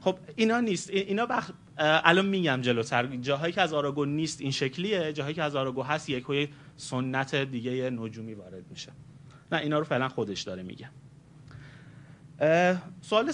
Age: 30-49